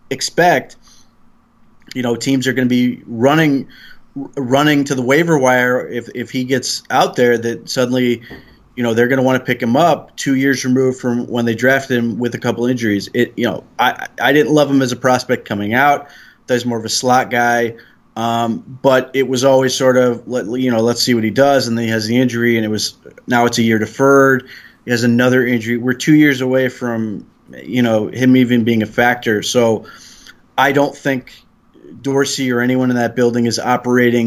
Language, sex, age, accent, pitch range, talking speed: English, male, 20-39, American, 115-130 Hz, 210 wpm